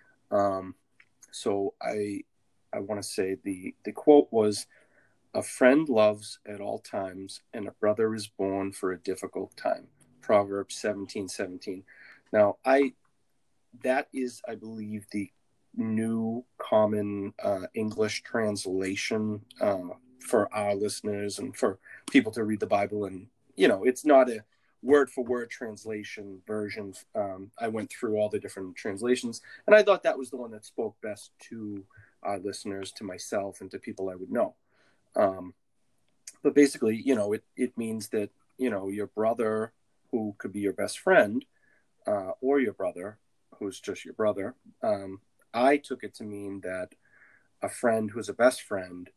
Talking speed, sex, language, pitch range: 160 wpm, male, English, 100-120 Hz